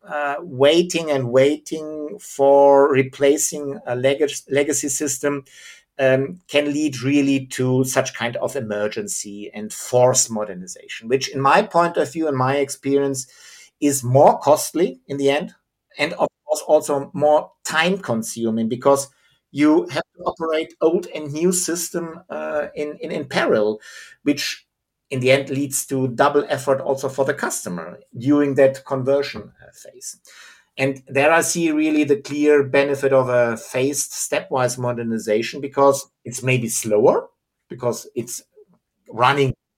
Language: English